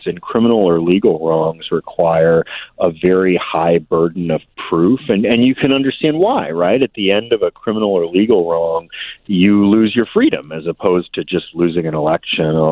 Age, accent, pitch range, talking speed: 30-49, American, 85-105 Hz, 185 wpm